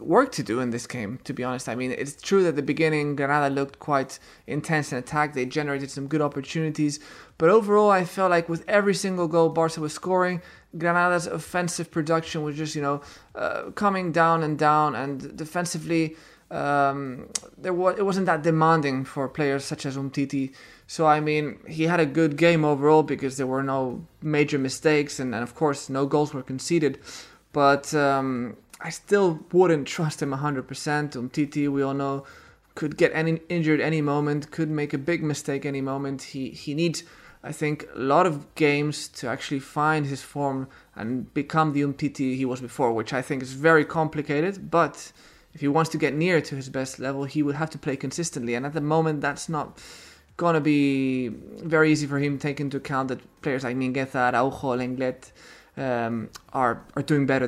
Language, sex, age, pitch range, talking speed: English, male, 20-39, 135-160 Hz, 195 wpm